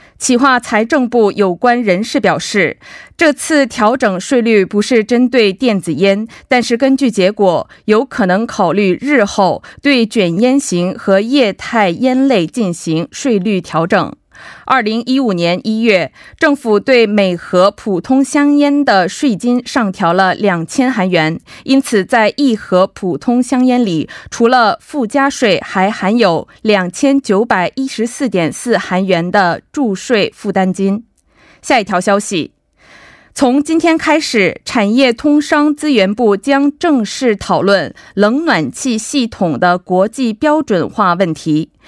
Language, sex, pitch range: Korean, female, 190-265 Hz